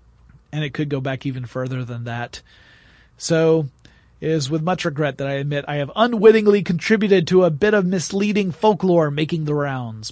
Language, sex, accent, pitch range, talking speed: English, male, American, 130-175 Hz, 185 wpm